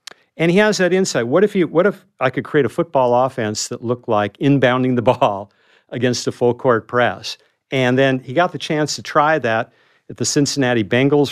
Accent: American